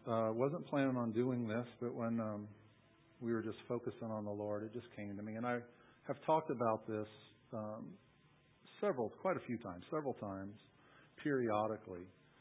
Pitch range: 110-130 Hz